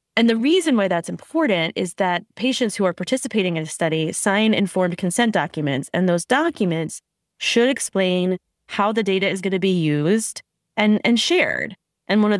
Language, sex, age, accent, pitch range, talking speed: English, female, 20-39, American, 175-225 Hz, 185 wpm